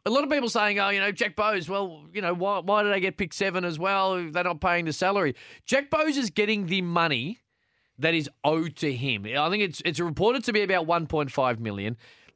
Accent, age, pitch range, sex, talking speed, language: Australian, 20-39, 135-190 Hz, male, 235 wpm, English